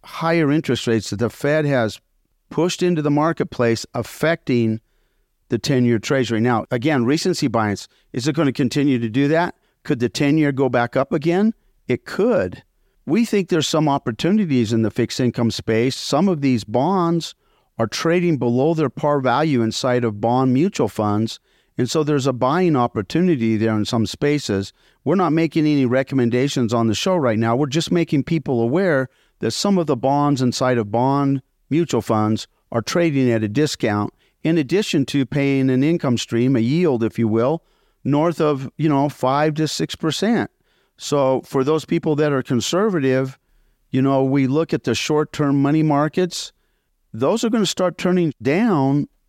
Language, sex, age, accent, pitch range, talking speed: English, male, 50-69, American, 120-160 Hz, 175 wpm